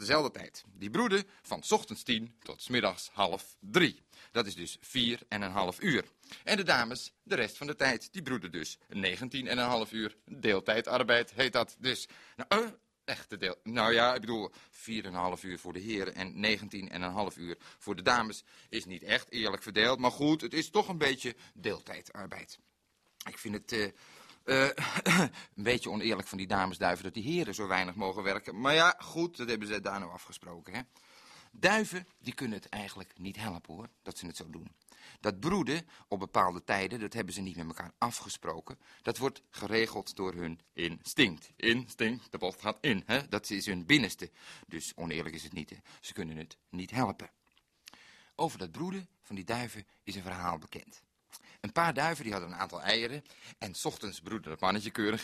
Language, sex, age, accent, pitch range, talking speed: Dutch, male, 40-59, Belgian, 95-125 Hz, 195 wpm